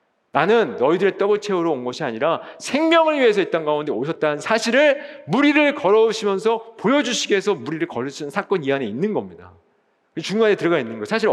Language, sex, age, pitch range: Korean, male, 40-59, 135-210 Hz